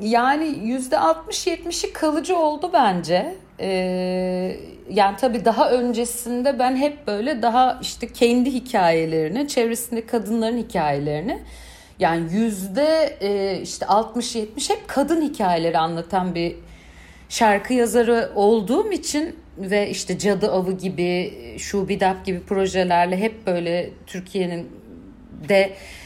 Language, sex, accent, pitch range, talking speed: Turkish, female, native, 180-250 Hz, 105 wpm